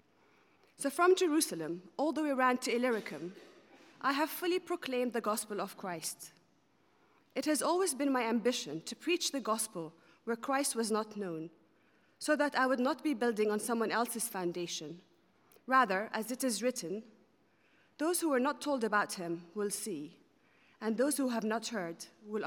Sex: female